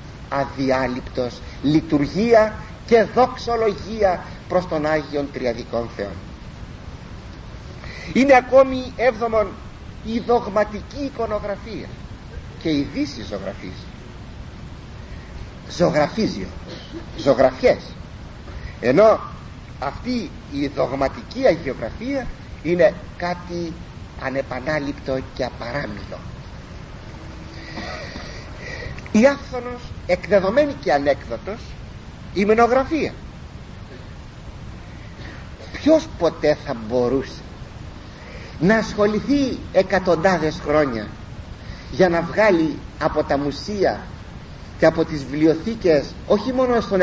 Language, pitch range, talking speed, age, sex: Greek, 130-210 Hz, 75 wpm, 50-69, male